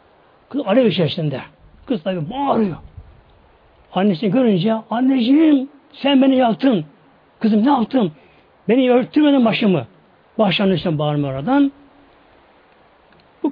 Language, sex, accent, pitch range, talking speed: Turkish, male, native, 165-235 Hz, 100 wpm